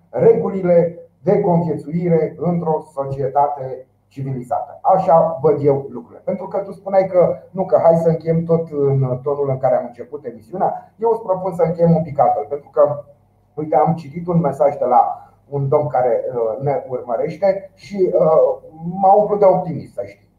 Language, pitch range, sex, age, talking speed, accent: Romanian, 145-190 Hz, male, 30-49, 170 wpm, native